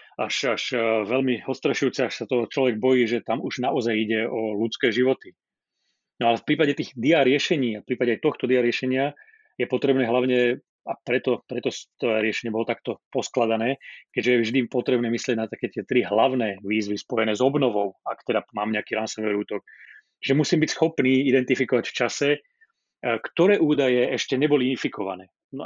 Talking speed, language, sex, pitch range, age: 175 wpm, Slovak, male, 120-145 Hz, 30-49